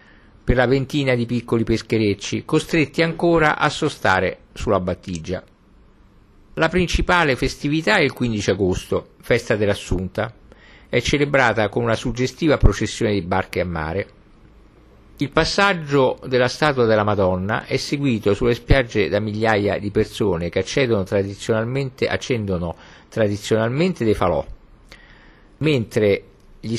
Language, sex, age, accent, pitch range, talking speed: Italian, male, 50-69, native, 100-135 Hz, 115 wpm